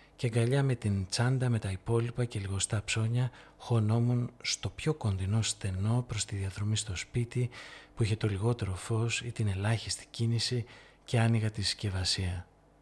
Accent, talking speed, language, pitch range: native, 160 wpm, Greek, 105-125 Hz